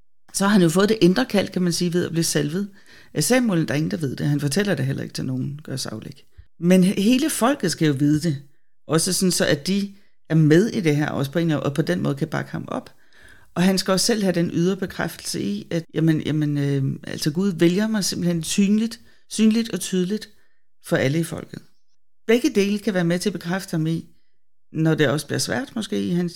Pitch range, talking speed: 145-190 Hz, 240 wpm